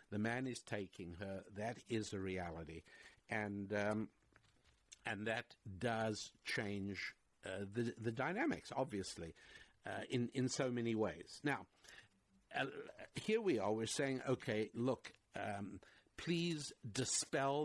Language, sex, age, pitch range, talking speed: English, male, 60-79, 105-130 Hz, 130 wpm